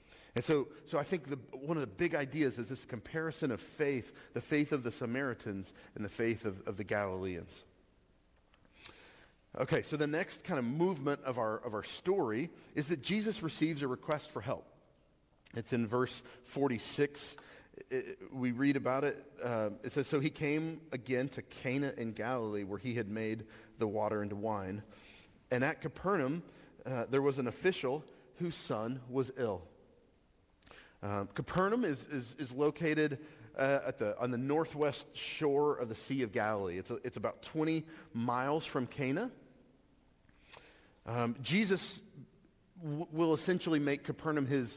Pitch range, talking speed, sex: 120-160 Hz, 160 wpm, male